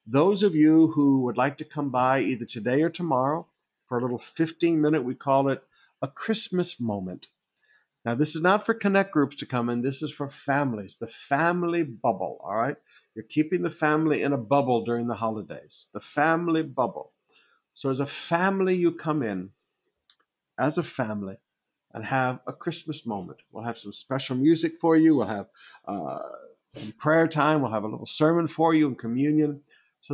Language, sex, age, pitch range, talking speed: English, male, 50-69, 120-155 Hz, 185 wpm